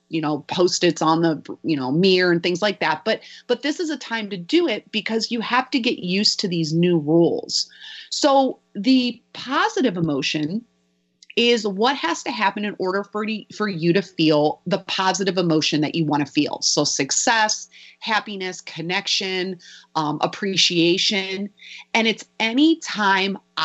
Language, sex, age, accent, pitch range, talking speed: English, female, 30-49, American, 165-230 Hz, 160 wpm